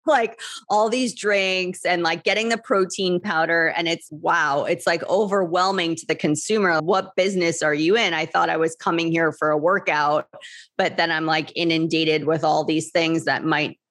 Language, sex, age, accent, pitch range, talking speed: English, female, 30-49, American, 155-180 Hz, 190 wpm